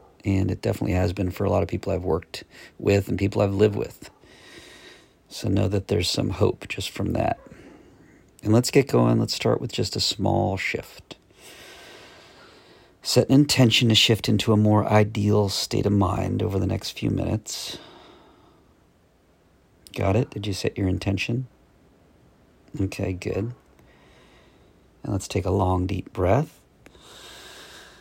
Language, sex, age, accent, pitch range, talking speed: English, male, 50-69, American, 95-110 Hz, 150 wpm